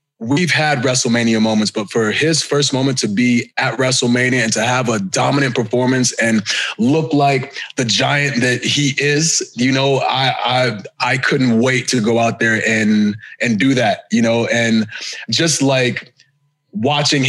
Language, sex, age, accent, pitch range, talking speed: English, male, 20-39, American, 120-145 Hz, 165 wpm